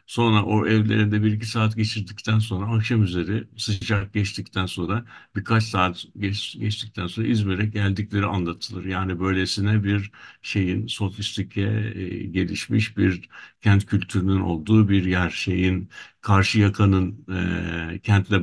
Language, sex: Turkish, male